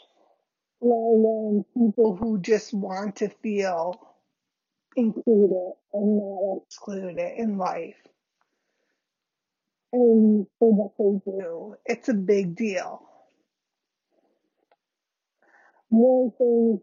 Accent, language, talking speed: American, English, 80 wpm